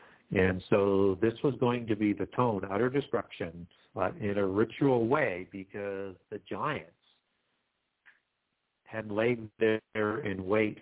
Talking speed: 135 wpm